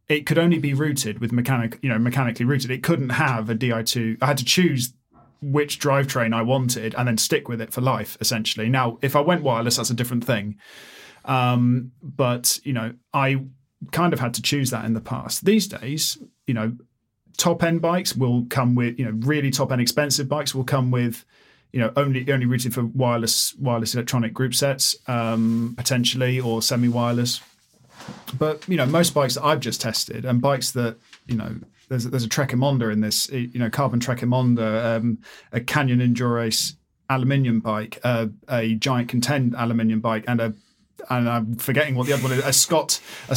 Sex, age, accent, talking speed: male, 40-59, British, 190 wpm